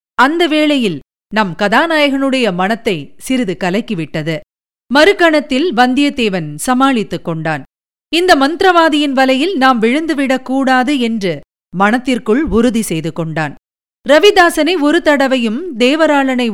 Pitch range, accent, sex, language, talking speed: 190-260 Hz, native, female, Tamil, 95 wpm